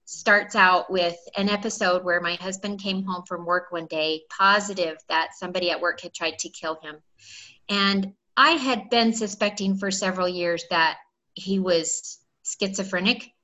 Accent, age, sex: American, 30-49, female